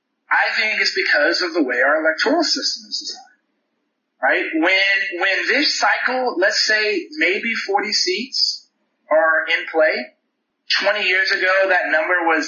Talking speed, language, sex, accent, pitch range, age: 150 wpm, English, male, American, 190-310 Hz, 30-49